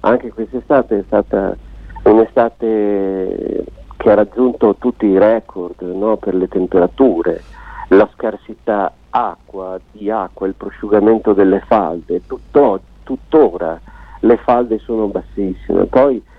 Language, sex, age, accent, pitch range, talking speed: Italian, male, 50-69, native, 105-155 Hz, 115 wpm